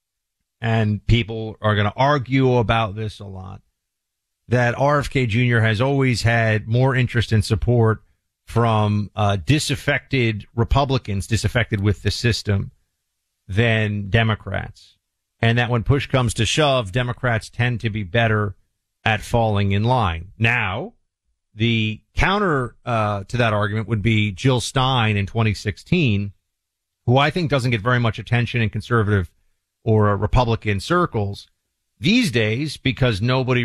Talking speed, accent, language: 135 wpm, American, English